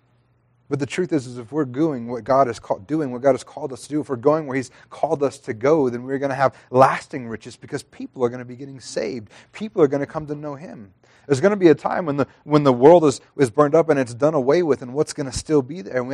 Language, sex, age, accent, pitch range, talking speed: English, male, 30-49, American, 120-150 Hz, 300 wpm